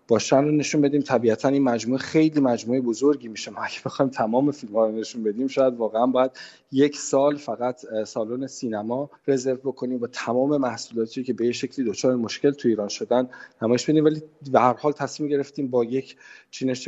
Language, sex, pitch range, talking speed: Persian, male, 115-140 Hz, 180 wpm